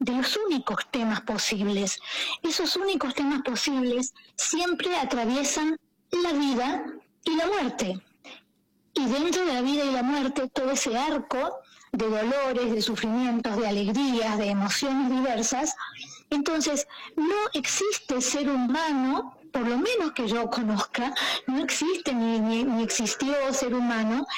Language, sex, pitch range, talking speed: Spanish, female, 225-280 Hz, 135 wpm